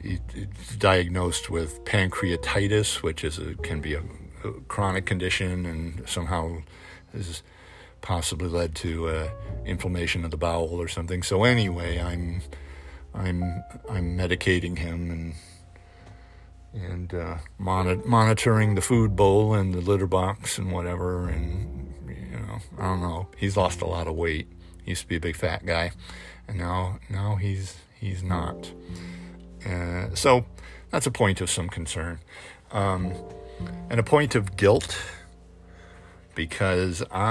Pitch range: 85-100 Hz